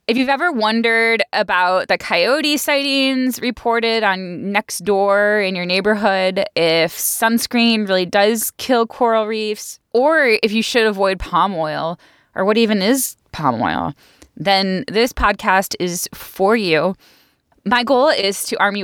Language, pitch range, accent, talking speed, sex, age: English, 180-225 Hz, American, 150 wpm, female, 10-29